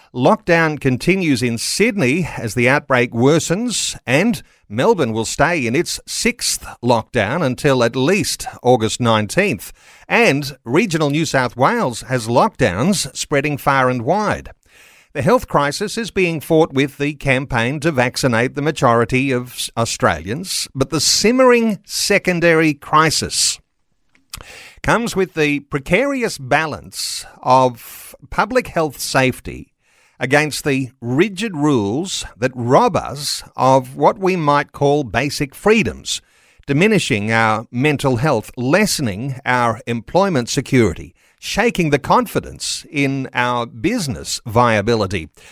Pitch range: 120-160 Hz